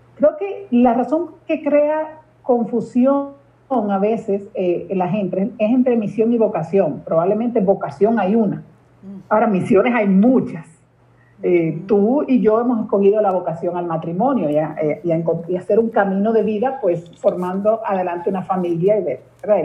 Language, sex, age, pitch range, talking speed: Spanish, female, 50-69, 175-225 Hz, 170 wpm